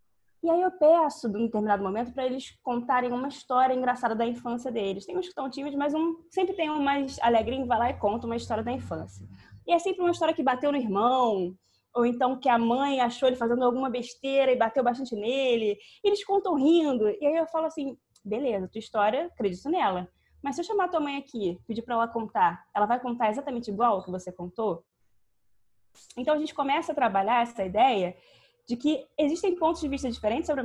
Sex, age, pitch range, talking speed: female, 20-39, 210-290 Hz, 220 wpm